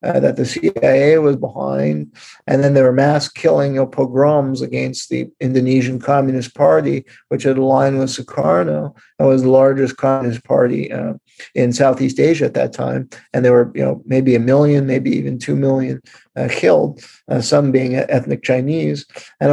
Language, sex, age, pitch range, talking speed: English, male, 50-69, 125-145 Hz, 170 wpm